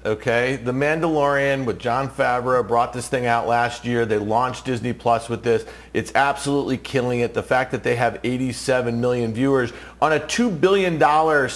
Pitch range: 130-160 Hz